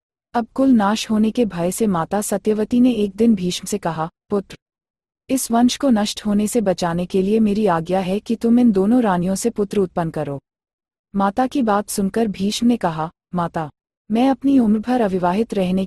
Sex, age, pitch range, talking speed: female, 30-49, 180-230 Hz, 195 wpm